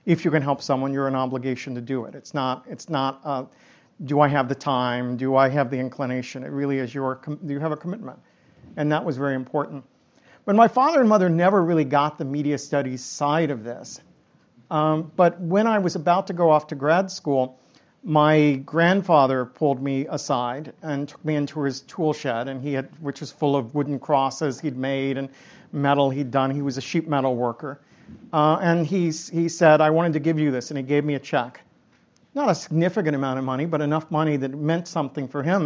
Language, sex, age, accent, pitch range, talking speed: English, male, 50-69, American, 135-160 Hz, 220 wpm